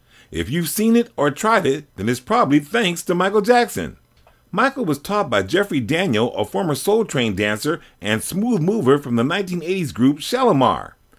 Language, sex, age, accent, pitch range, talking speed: English, male, 40-59, American, 130-205 Hz, 175 wpm